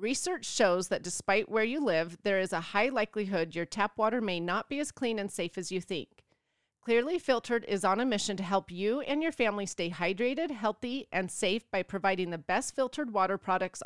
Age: 30-49